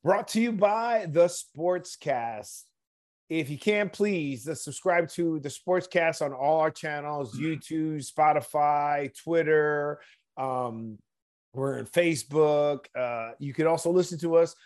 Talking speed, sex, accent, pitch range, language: 135 wpm, male, American, 145-175 Hz, English